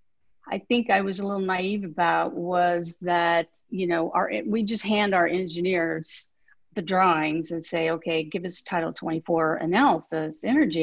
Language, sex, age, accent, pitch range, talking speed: English, female, 40-59, American, 165-205 Hz, 160 wpm